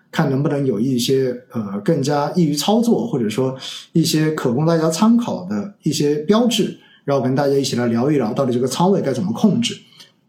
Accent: native